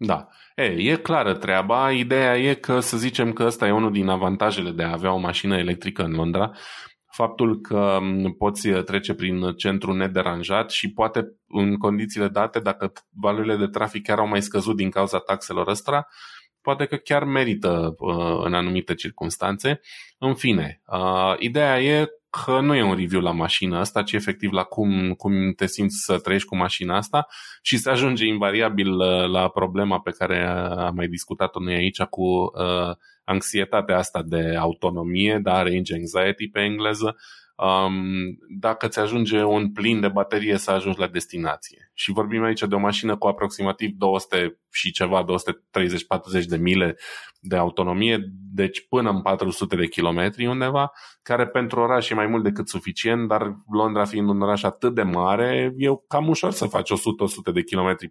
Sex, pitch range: male, 95-115 Hz